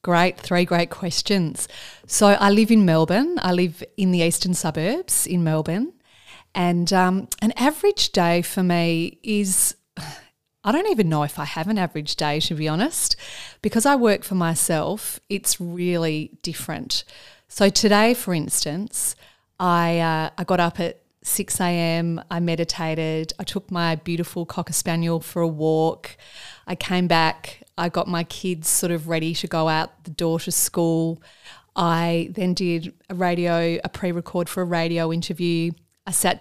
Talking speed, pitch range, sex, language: 160 wpm, 165-190 Hz, female, English